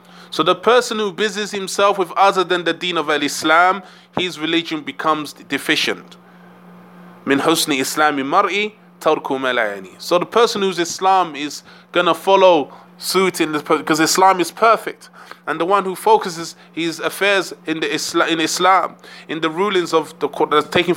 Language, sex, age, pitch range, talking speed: English, male, 20-39, 155-185 Hz, 145 wpm